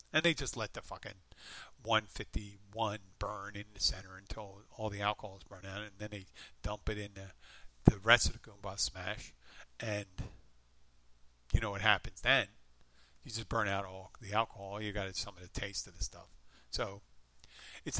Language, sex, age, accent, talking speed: English, male, 50-69, American, 185 wpm